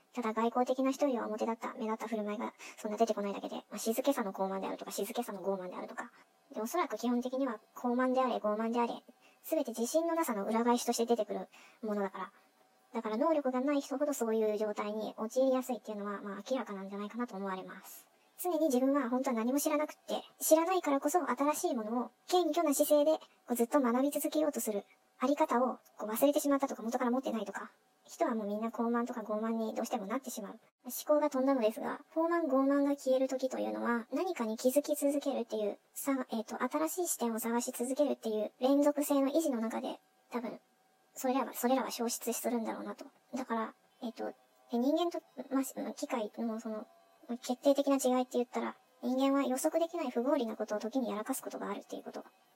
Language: Japanese